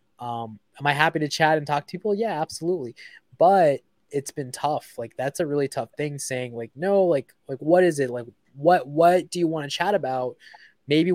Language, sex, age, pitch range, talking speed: English, male, 20-39, 120-155 Hz, 215 wpm